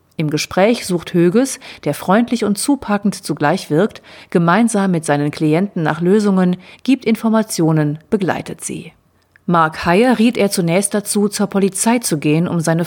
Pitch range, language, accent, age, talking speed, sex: 165-210 Hz, German, German, 40-59, 150 wpm, female